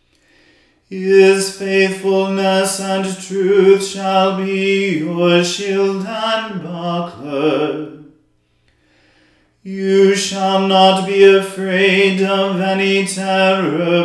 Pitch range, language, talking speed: 180-195 Hz, English, 75 wpm